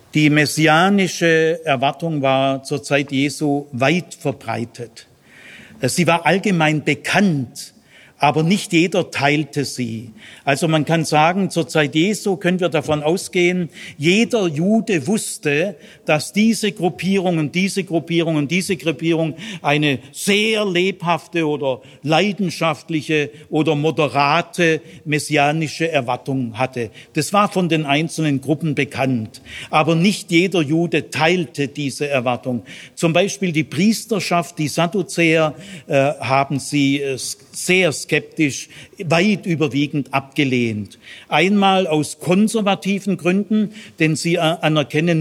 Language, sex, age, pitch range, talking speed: German, male, 50-69, 140-180 Hz, 115 wpm